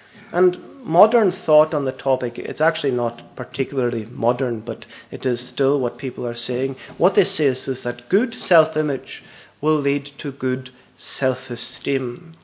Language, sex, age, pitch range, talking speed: English, male, 30-49, 135-170 Hz, 150 wpm